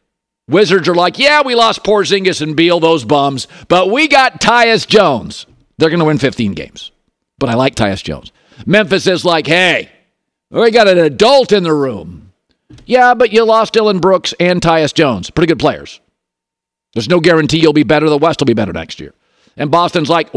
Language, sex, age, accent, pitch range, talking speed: English, male, 50-69, American, 155-210 Hz, 195 wpm